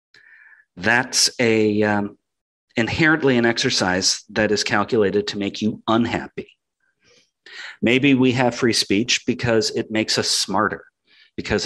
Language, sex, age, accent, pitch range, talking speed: English, male, 40-59, American, 100-125 Hz, 125 wpm